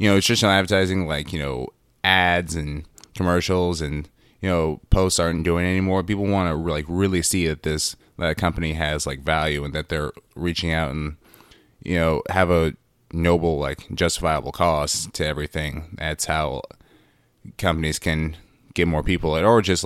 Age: 20-39